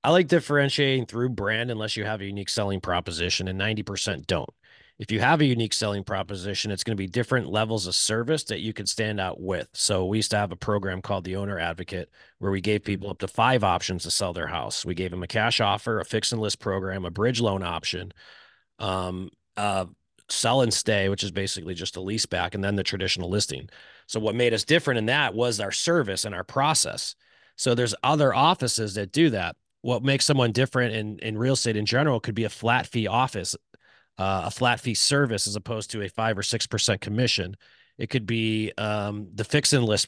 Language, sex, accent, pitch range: English, male, American, 100-120 Hz